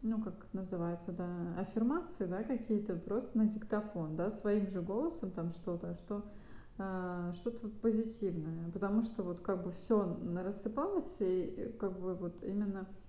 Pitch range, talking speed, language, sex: 185-220 Hz, 145 wpm, Russian, female